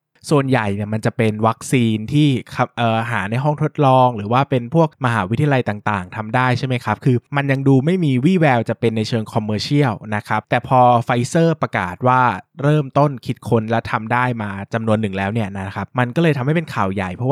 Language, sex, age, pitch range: Thai, male, 20-39, 105-130 Hz